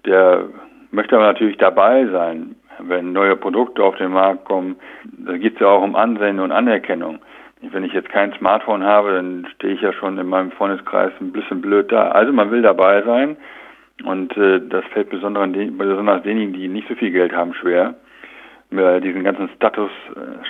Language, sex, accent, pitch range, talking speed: German, male, German, 95-110 Hz, 190 wpm